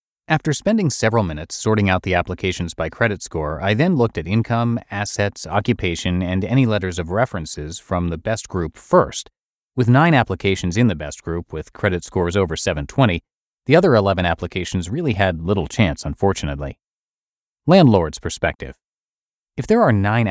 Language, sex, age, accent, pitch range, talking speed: English, male, 30-49, American, 85-110 Hz, 165 wpm